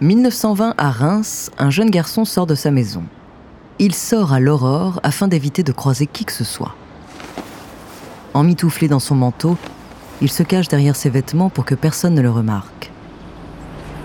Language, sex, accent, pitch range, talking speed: French, female, French, 125-160 Hz, 160 wpm